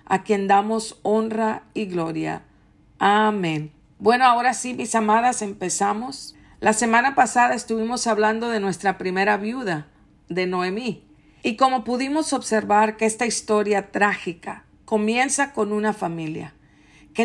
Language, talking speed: English, 130 wpm